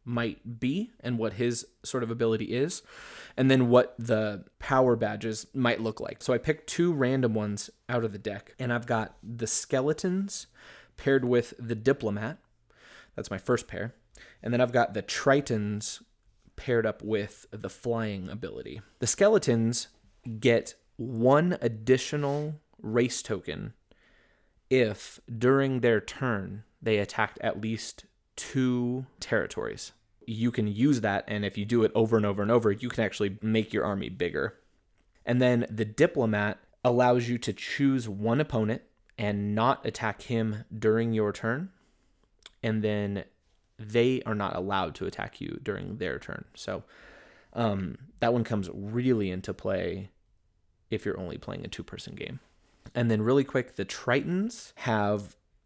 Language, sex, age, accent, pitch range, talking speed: English, male, 20-39, American, 105-125 Hz, 155 wpm